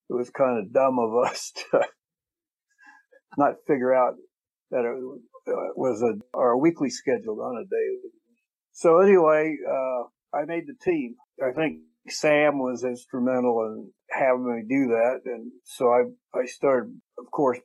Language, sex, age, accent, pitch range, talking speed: English, male, 50-69, American, 125-170 Hz, 155 wpm